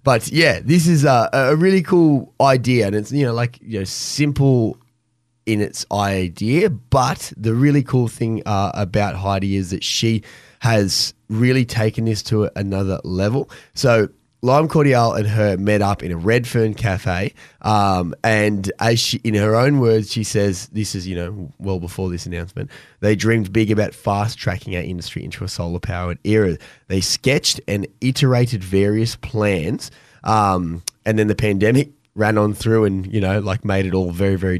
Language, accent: English, Australian